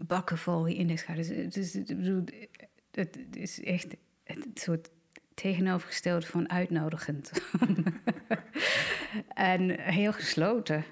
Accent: Dutch